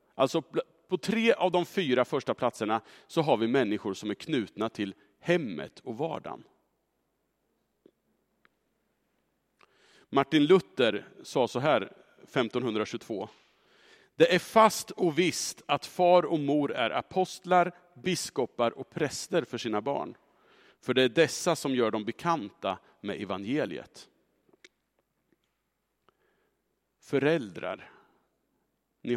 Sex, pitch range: male, 145-205 Hz